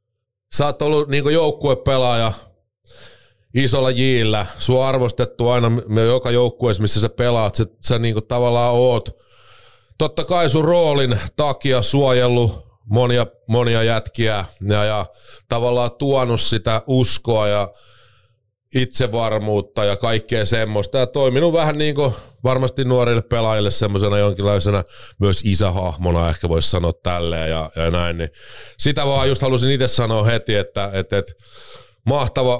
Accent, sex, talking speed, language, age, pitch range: native, male, 130 wpm, Finnish, 30-49, 105-130 Hz